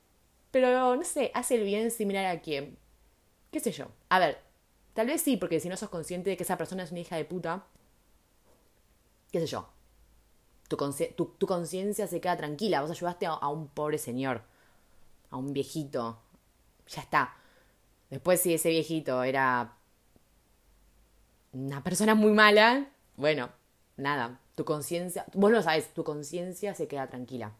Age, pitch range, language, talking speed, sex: 20-39, 140-205 Hz, Spanish, 160 wpm, female